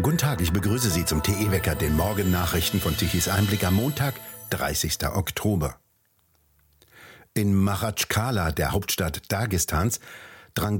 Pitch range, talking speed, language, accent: 85-105 Hz, 120 wpm, German, German